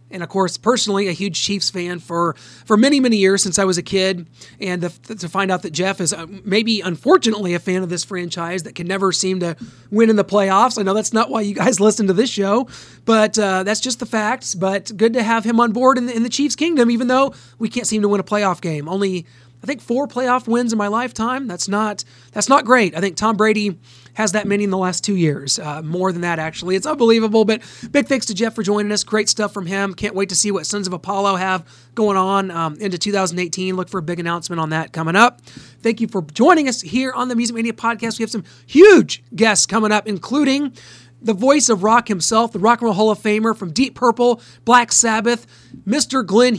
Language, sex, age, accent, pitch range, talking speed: English, male, 30-49, American, 185-230 Hz, 240 wpm